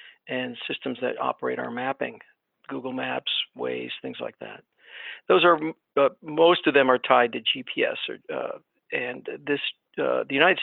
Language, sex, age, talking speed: English, male, 50-69, 165 wpm